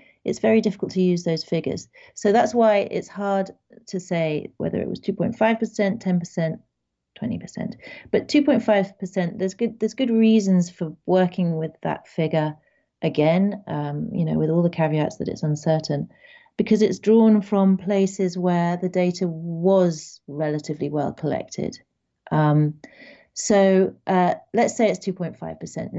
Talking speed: 145 wpm